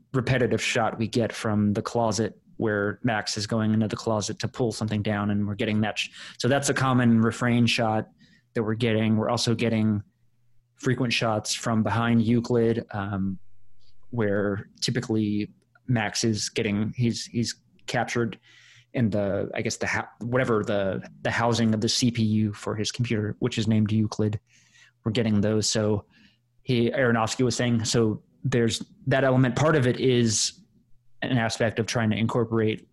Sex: male